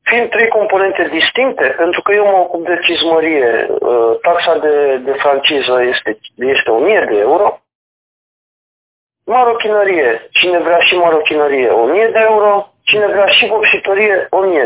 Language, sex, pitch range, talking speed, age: Romanian, male, 160-210 Hz, 130 wpm, 40-59